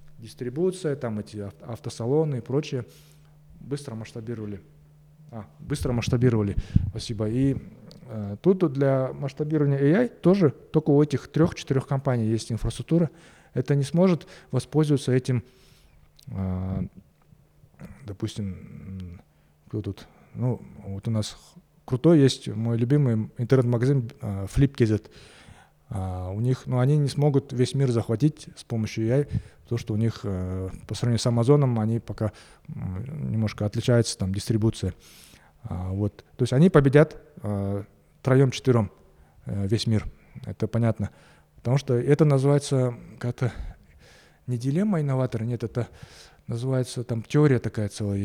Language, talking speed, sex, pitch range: Russian, 130 wpm, male, 105-140 Hz